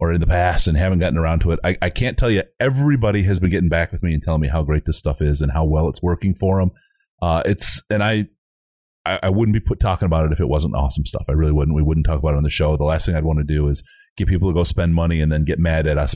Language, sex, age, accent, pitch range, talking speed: English, male, 30-49, American, 80-105 Hz, 310 wpm